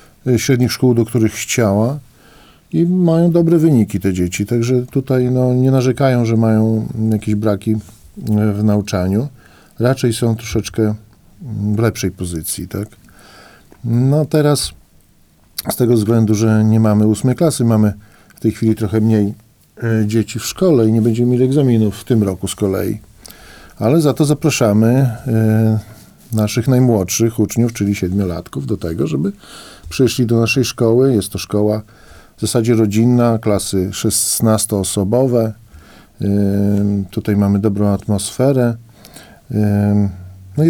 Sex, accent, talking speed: male, native, 140 wpm